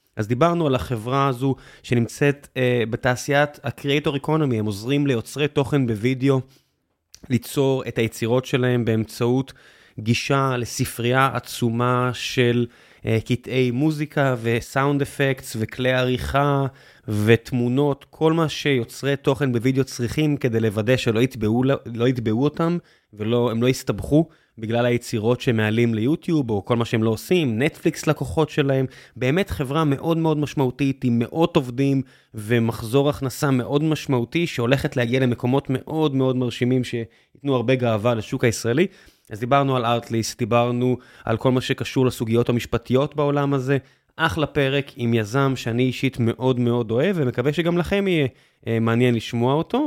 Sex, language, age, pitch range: male, Hebrew, 20-39, 120-145 Hz